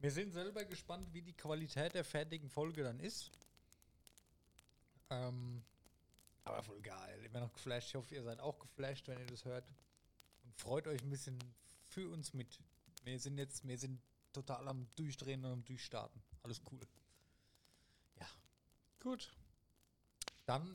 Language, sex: German, male